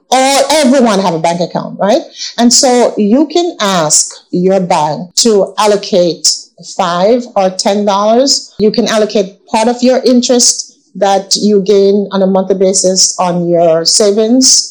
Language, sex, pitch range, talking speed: English, female, 185-235 Hz, 145 wpm